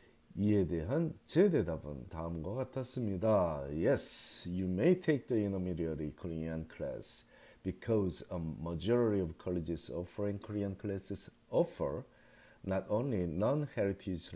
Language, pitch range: Korean, 85-125 Hz